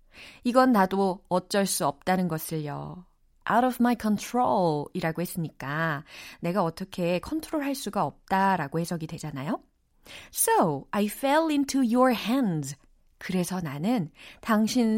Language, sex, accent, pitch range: Korean, female, native, 170-250 Hz